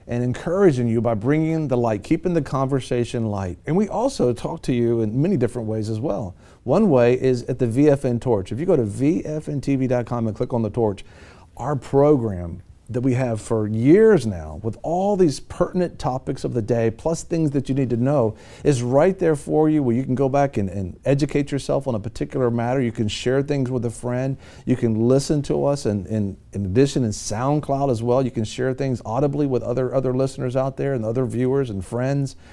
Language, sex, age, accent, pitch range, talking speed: English, male, 40-59, American, 115-145 Hz, 215 wpm